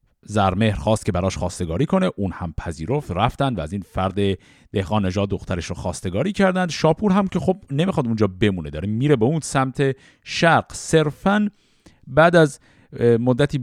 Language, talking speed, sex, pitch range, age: Persian, 165 wpm, male, 110-170 Hz, 50-69